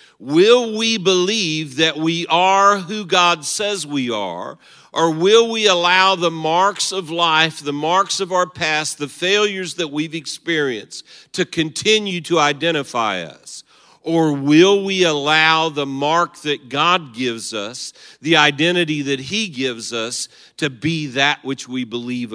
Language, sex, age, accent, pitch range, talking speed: English, male, 50-69, American, 115-165 Hz, 150 wpm